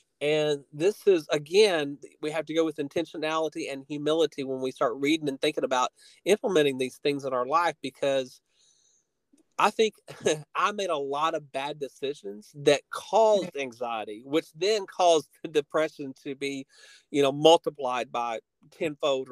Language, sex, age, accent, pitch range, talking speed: English, male, 40-59, American, 145-180 Hz, 155 wpm